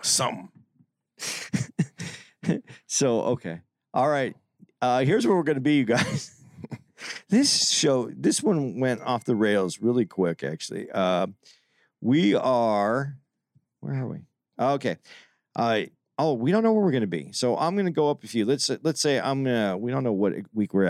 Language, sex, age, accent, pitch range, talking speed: English, male, 50-69, American, 110-150 Hz, 175 wpm